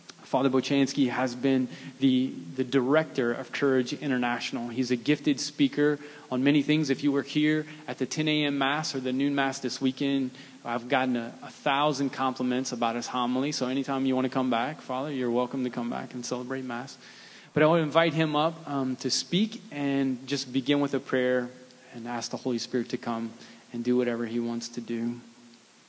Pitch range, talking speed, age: 120-140 Hz, 200 wpm, 20-39